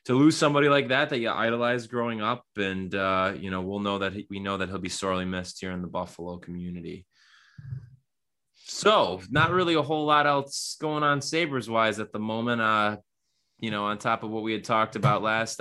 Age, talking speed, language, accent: 20-39, 215 wpm, English, American